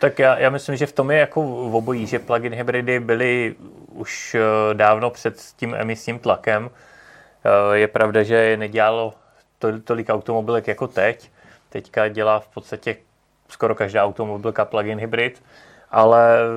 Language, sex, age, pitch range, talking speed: Czech, male, 20-39, 110-120 Hz, 145 wpm